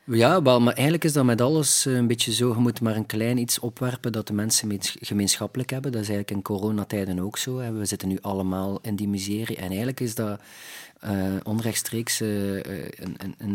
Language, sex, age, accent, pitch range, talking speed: Dutch, male, 40-59, Dutch, 100-115 Hz, 190 wpm